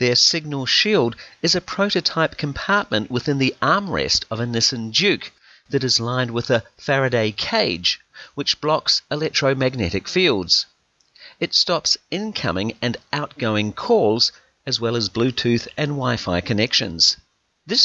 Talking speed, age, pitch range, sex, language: 130 wpm, 40-59, 105-150 Hz, male, English